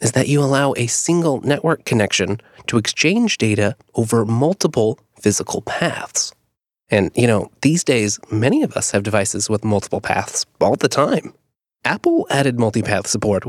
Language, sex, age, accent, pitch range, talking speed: English, male, 30-49, American, 110-145 Hz, 155 wpm